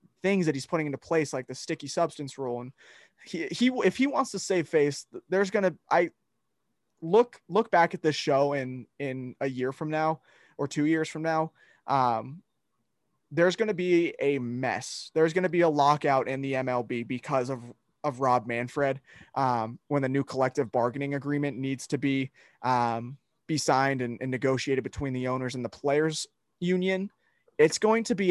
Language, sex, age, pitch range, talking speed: English, male, 20-39, 130-160 Hz, 190 wpm